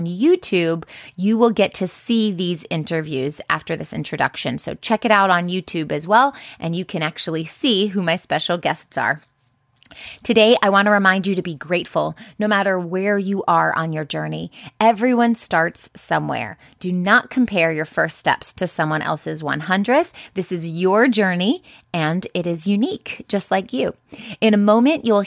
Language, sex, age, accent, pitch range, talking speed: English, female, 30-49, American, 165-220 Hz, 175 wpm